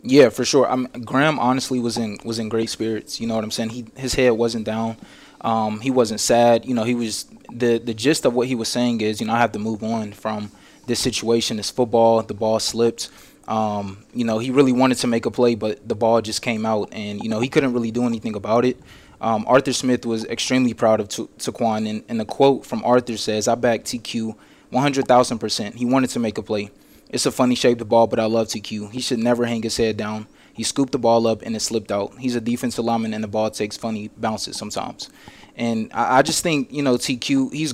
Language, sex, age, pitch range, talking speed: English, male, 20-39, 110-130 Hz, 240 wpm